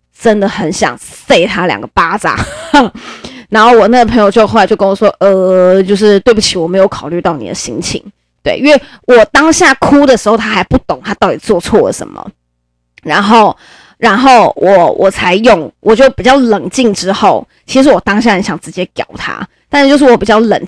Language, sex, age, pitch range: Chinese, female, 20-39, 185-230 Hz